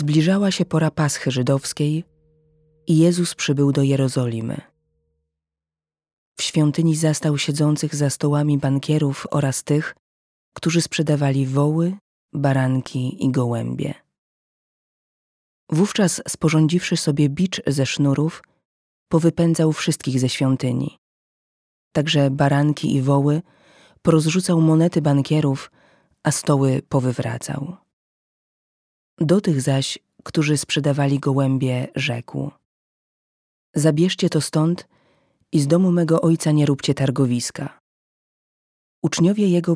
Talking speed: 100 wpm